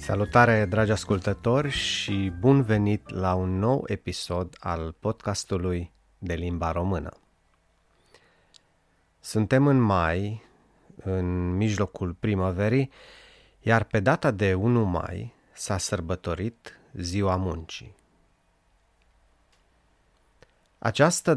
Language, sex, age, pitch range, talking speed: Romanian, male, 30-49, 90-110 Hz, 90 wpm